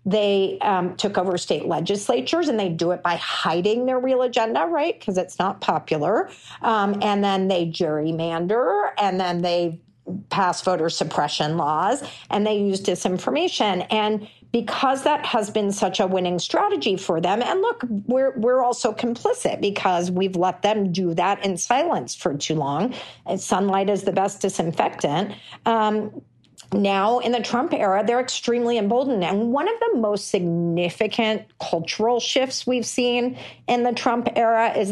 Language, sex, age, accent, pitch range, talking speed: English, female, 50-69, American, 180-235 Hz, 160 wpm